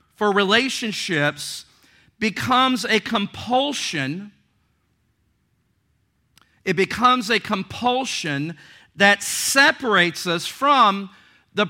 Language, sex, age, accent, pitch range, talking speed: English, male, 50-69, American, 155-235 Hz, 70 wpm